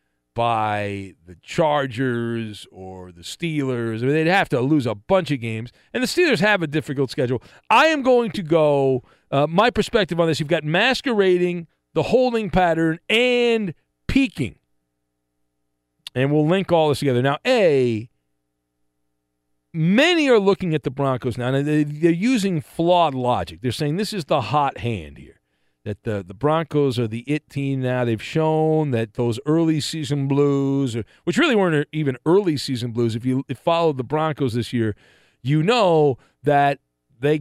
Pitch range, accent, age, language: 115-165 Hz, American, 40-59, English